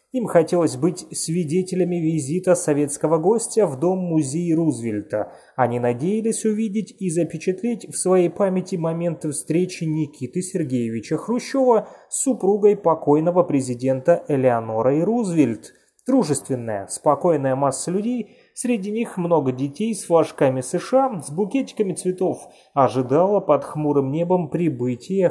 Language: Russian